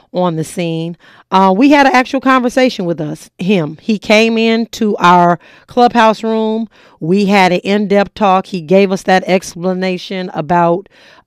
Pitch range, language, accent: 175-220 Hz, English, American